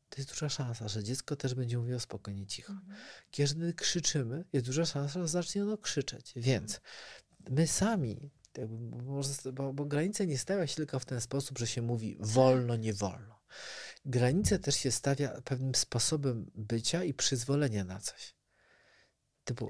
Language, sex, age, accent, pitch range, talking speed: Polish, male, 40-59, native, 130-170 Hz, 160 wpm